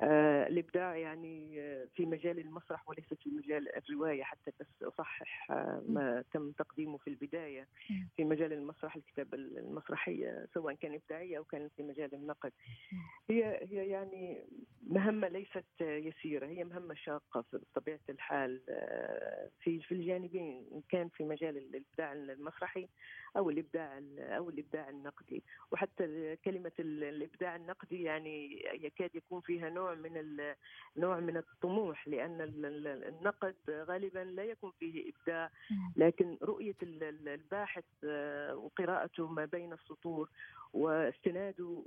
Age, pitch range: 40-59, 150-180 Hz